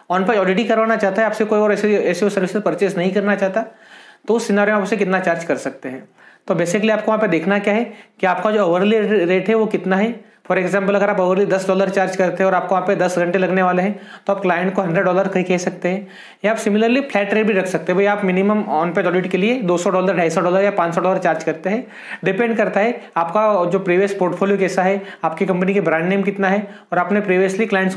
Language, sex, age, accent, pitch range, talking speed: Hindi, male, 30-49, native, 185-215 Hz, 255 wpm